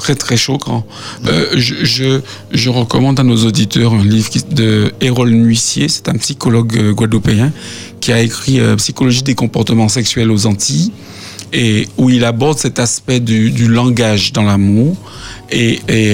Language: French